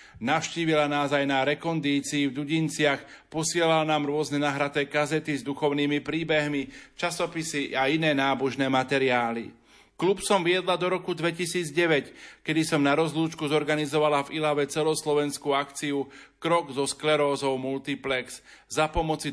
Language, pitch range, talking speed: Slovak, 140-155 Hz, 125 wpm